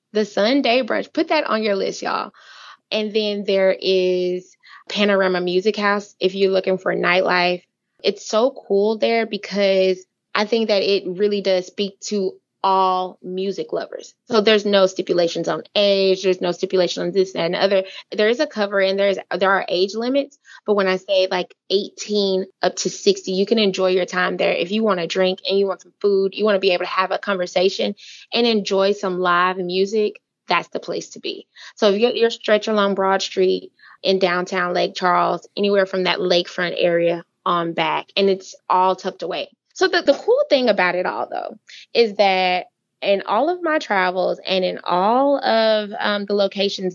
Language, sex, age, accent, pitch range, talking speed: English, female, 20-39, American, 185-220 Hz, 195 wpm